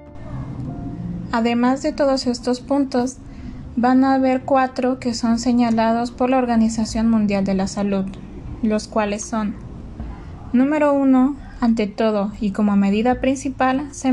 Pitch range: 205-255 Hz